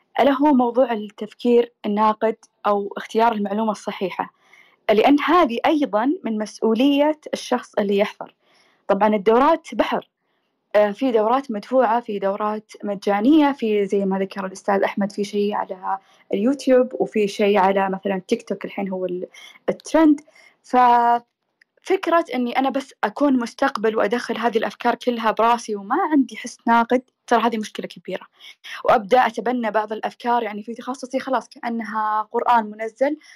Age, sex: 20-39, female